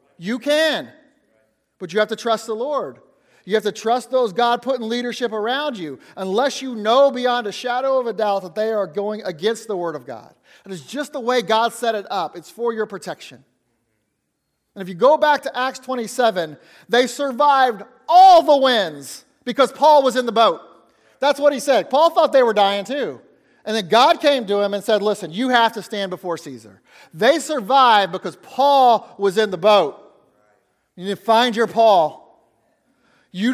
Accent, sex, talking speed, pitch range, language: American, male, 195 wpm, 205-270 Hz, English